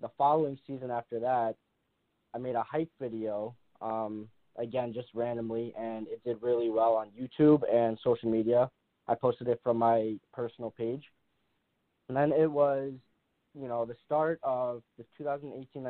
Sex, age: male, 20-39